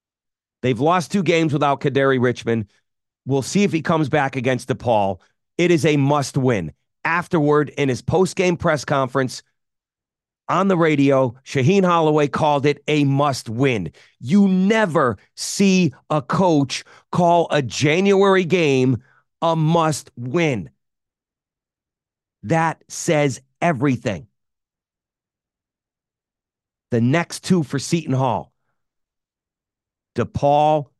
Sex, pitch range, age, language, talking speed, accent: male, 125-160 Hz, 40-59, English, 110 wpm, American